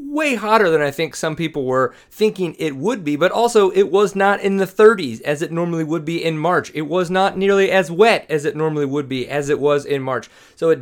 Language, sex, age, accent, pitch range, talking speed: English, male, 30-49, American, 140-190 Hz, 250 wpm